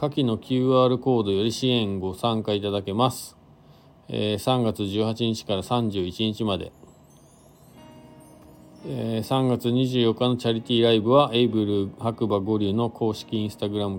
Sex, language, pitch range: male, Japanese, 95-120 Hz